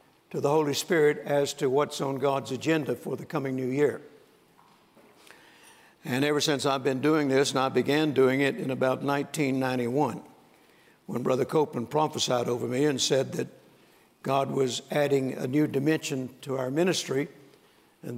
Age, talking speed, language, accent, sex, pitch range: 60-79, 160 wpm, English, American, male, 130-150 Hz